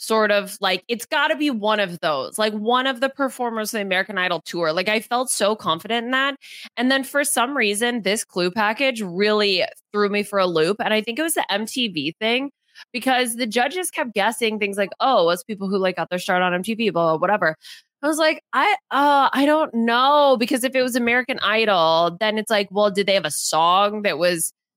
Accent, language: American, English